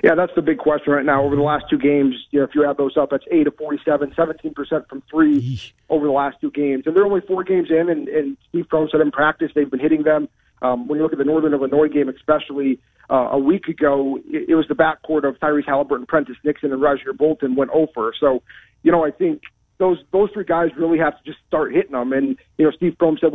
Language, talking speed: English, 250 wpm